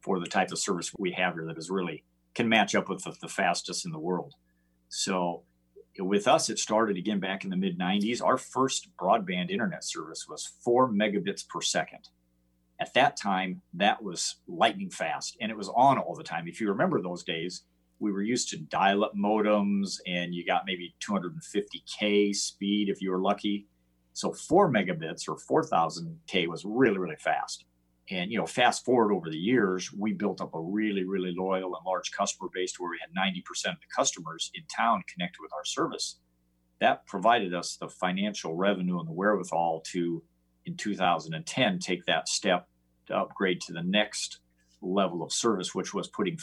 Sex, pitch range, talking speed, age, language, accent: male, 80-100 Hz, 185 wpm, 50-69, English, American